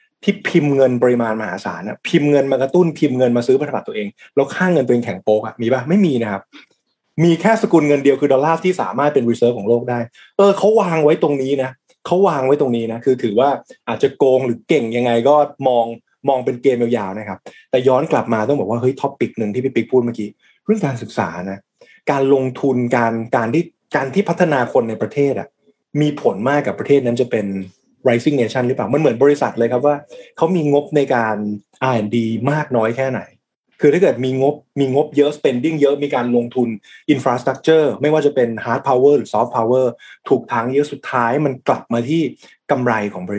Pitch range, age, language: 120-150 Hz, 20-39, Thai